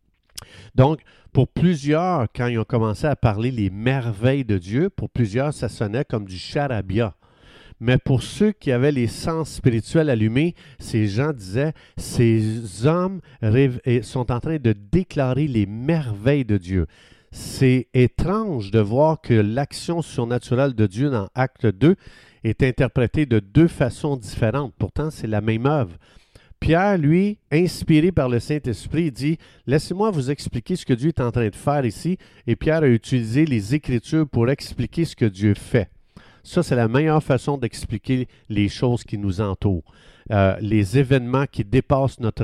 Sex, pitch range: male, 110-145 Hz